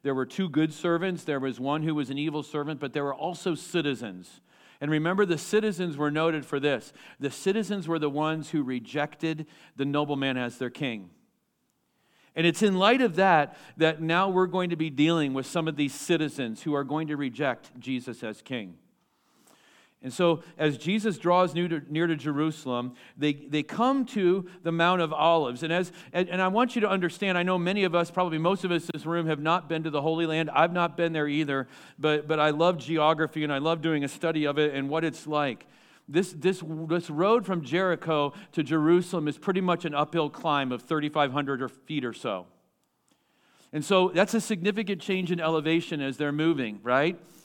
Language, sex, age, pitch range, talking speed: English, male, 40-59, 145-180 Hz, 205 wpm